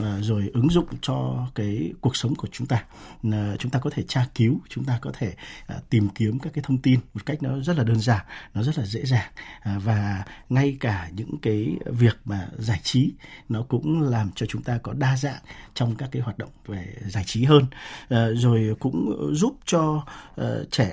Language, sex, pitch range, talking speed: Vietnamese, male, 110-145 Hz, 200 wpm